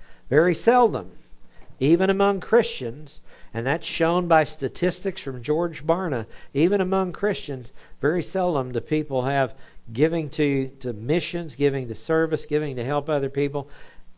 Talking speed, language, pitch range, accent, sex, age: 140 wpm, English, 115-155 Hz, American, male, 60-79